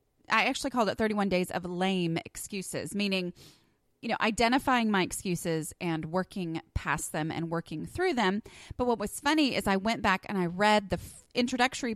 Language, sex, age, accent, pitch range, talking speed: English, female, 30-49, American, 175-245 Hz, 180 wpm